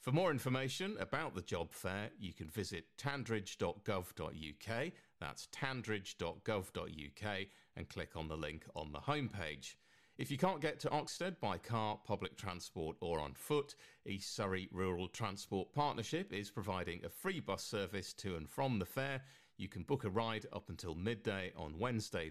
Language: English